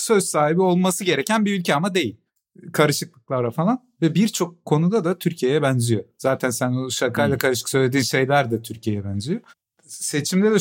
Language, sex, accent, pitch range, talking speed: Turkish, male, native, 130-175 Hz, 155 wpm